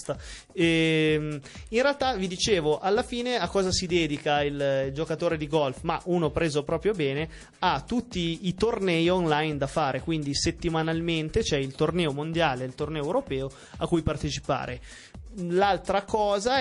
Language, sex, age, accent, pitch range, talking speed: Italian, male, 30-49, native, 145-170 Hz, 150 wpm